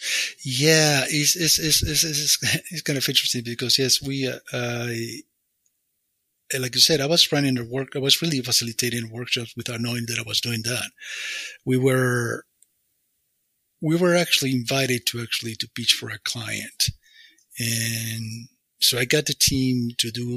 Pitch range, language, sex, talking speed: 120-145 Hz, English, male, 160 wpm